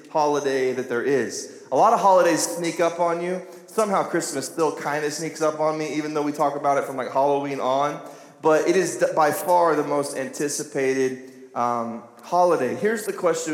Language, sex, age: English, male, 20-39